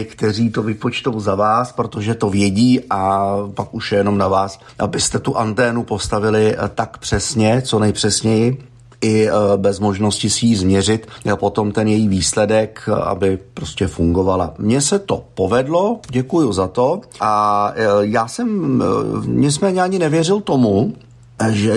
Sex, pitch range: male, 105-120 Hz